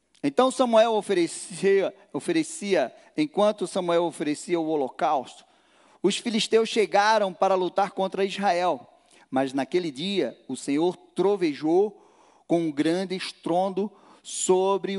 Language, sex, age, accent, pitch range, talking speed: Portuguese, male, 40-59, Brazilian, 155-245 Hz, 110 wpm